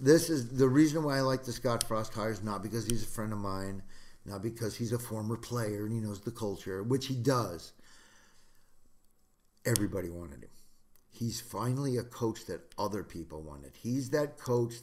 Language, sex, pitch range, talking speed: English, male, 95-120 Hz, 185 wpm